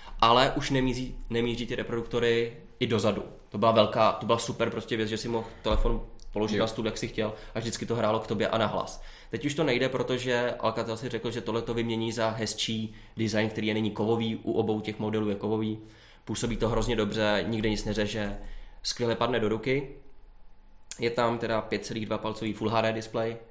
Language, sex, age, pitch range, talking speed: Czech, male, 20-39, 105-115 Hz, 195 wpm